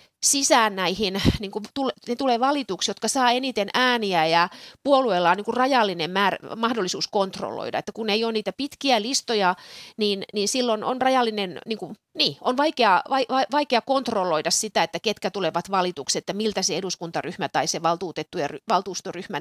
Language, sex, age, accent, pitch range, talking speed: Finnish, female, 30-49, native, 170-235 Hz, 170 wpm